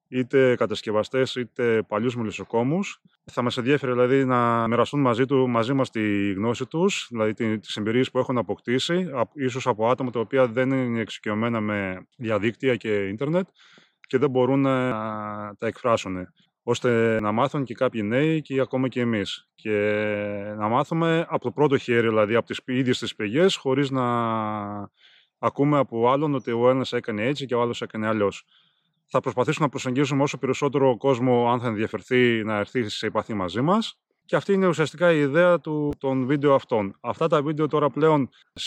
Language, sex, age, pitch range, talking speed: Greek, male, 20-39, 115-145 Hz, 175 wpm